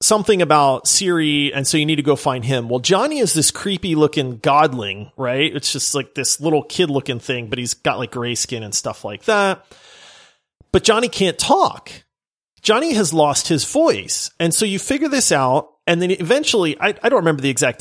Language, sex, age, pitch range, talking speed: English, male, 30-49, 135-195 Hz, 200 wpm